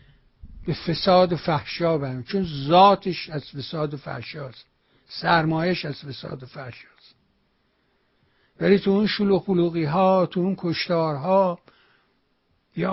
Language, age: English, 60-79